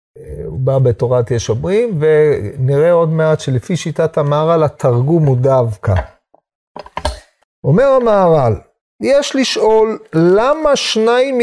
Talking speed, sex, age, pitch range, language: 105 wpm, male, 40-59, 130-175 Hz, Hebrew